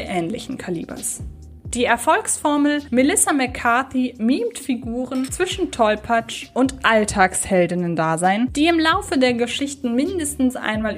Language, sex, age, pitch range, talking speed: German, female, 20-39, 200-260 Hz, 105 wpm